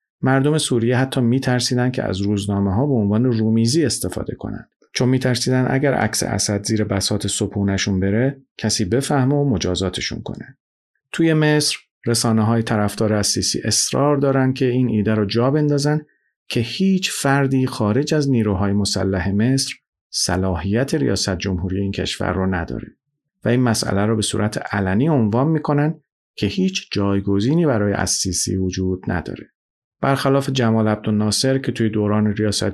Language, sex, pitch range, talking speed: Persian, male, 100-135 Hz, 145 wpm